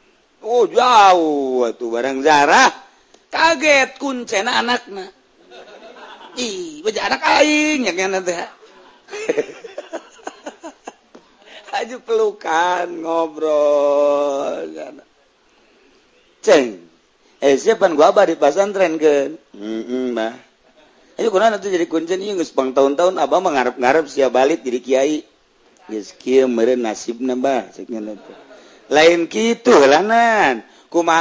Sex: male